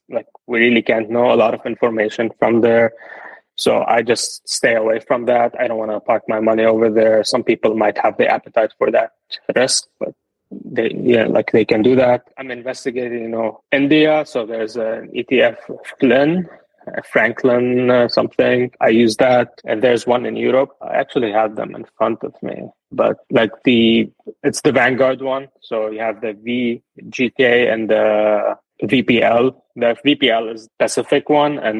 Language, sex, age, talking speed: English, male, 20-39, 175 wpm